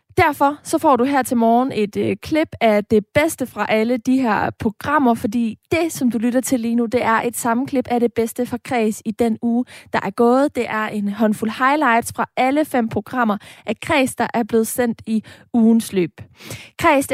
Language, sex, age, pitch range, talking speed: Danish, female, 20-39, 215-255 Hz, 210 wpm